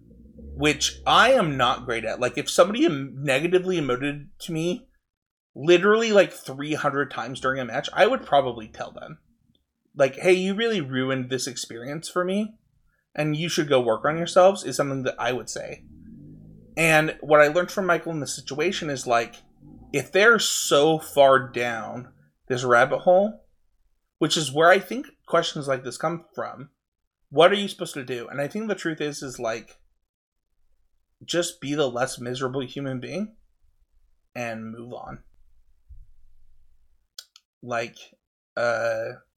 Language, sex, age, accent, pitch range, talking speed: English, male, 30-49, American, 120-170 Hz, 155 wpm